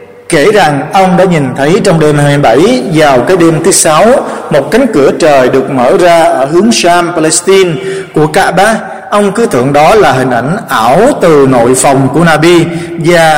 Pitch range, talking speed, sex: 145-195 Hz, 185 wpm, male